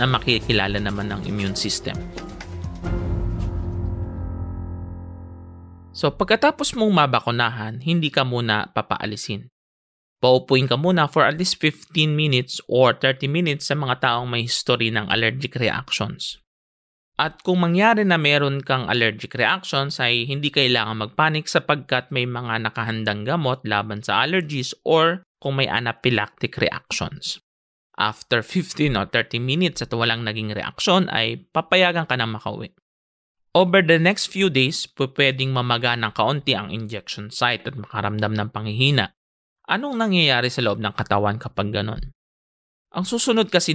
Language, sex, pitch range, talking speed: English, male, 105-145 Hz, 135 wpm